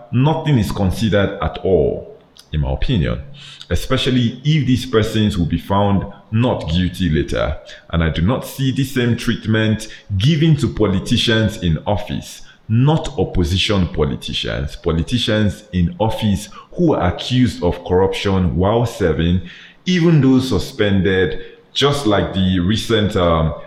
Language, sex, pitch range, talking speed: English, male, 80-110 Hz, 130 wpm